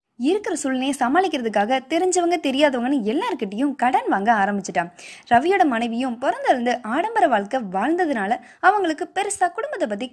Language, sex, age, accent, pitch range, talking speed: Tamil, female, 20-39, native, 205-280 Hz, 115 wpm